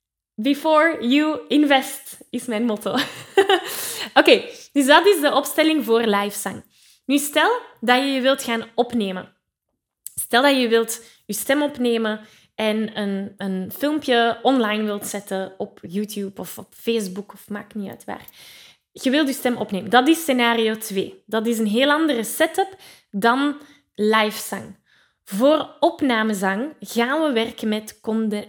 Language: Dutch